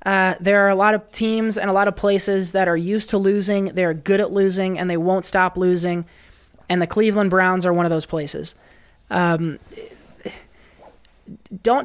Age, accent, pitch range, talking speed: 20-39, American, 165-195 Hz, 185 wpm